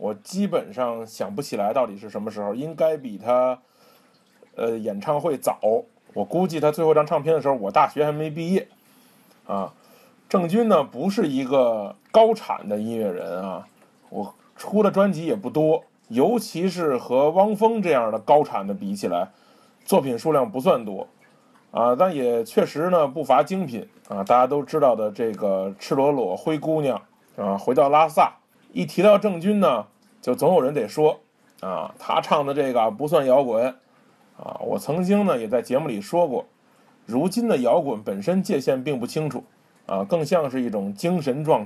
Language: Chinese